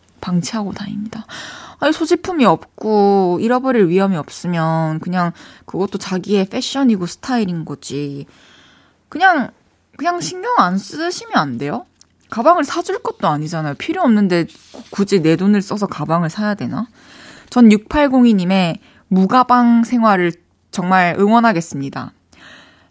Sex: female